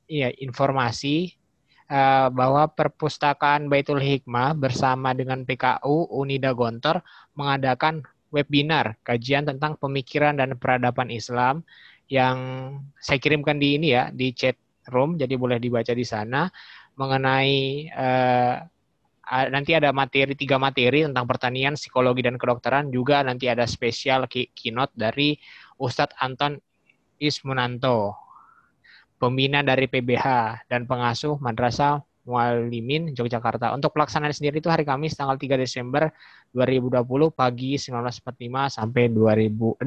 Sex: male